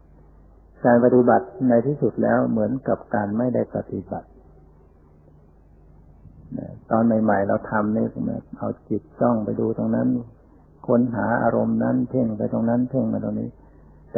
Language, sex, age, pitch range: Thai, male, 60-79, 80-120 Hz